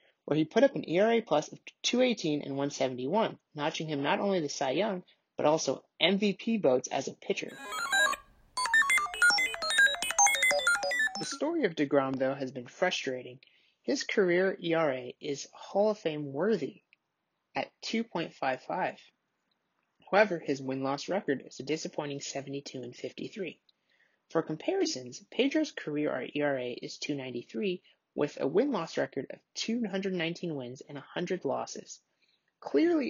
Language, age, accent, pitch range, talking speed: English, 30-49, American, 140-200 Hz, 130 wpm